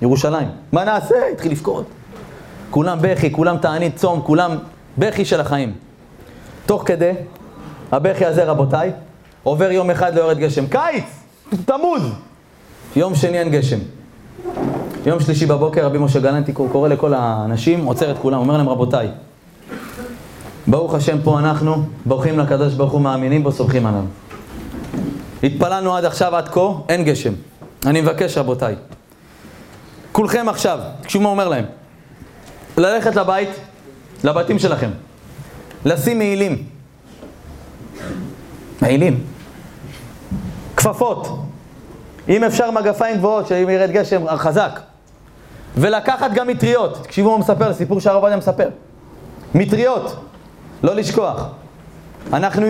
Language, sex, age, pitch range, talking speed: Hebrew, male, 30-49, 140-205 Hz, 120 wpm